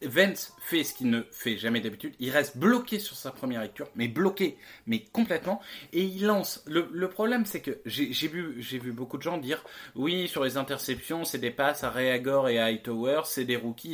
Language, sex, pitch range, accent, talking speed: French, male, 130-190 Hz, French, 220 wpm